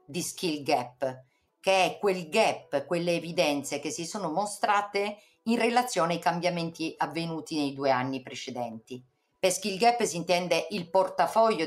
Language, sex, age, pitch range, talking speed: Italian, female, 50-69, 145-210 Hz, 150 wpm